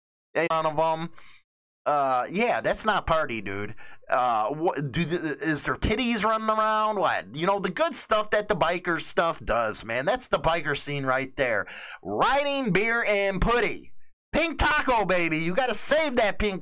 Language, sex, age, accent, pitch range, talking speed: English, male, 30-49, American, 165-260 Hz, 175 wpm